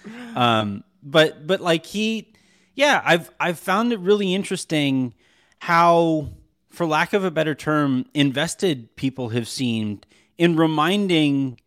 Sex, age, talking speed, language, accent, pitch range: male, 30-49, 130 wpm, English, American, 135-175 Hz